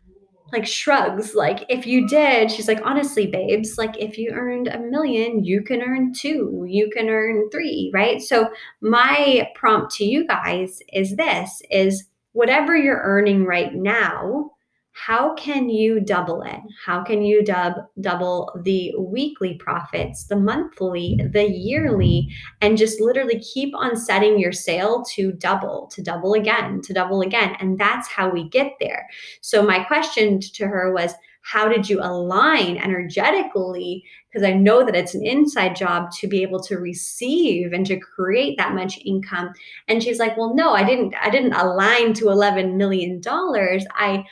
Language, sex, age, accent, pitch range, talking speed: English, female, 20-39, American, 185-230 Hz, 165 wpm